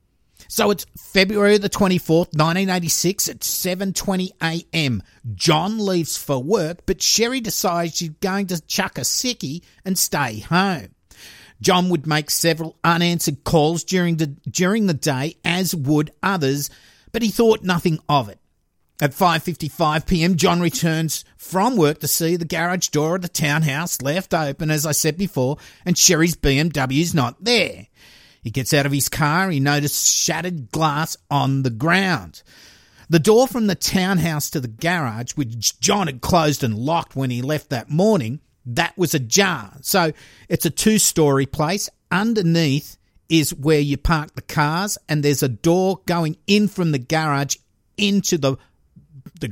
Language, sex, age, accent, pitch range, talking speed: English, male, 50-69, Australian, 140-180 Hz, 155 wpm